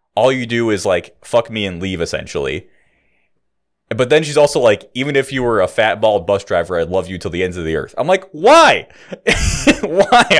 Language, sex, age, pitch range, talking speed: English, male, 20-39, 115-185 Hz, 215 wpm